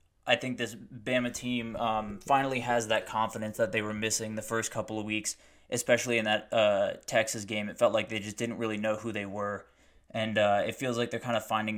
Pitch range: 110-120 Hz